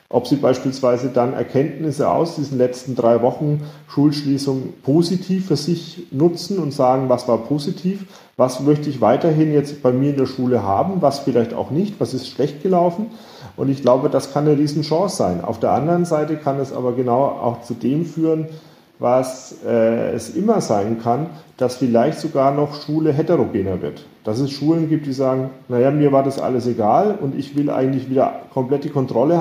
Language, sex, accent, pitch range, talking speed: German, male, German, 125-155 Hz, 185 wpm